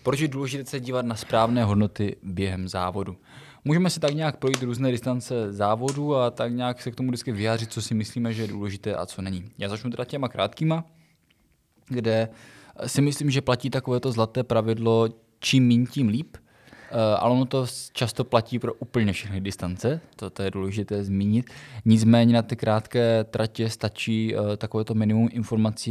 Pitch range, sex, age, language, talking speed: 100-120 Hz, male, 20-39, Czech, 170 wpm